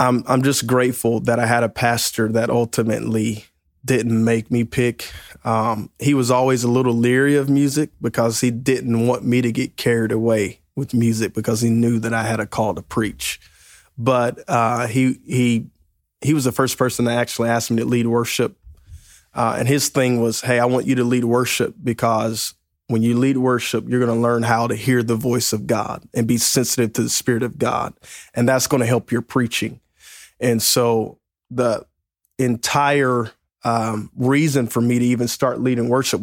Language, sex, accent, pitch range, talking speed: English, male, American, 115-125 Hz, 190 wpm